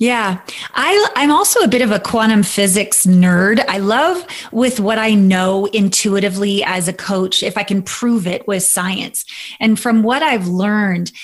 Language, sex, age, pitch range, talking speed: English, female, 20-39, 190-230 Hz, 170 wpm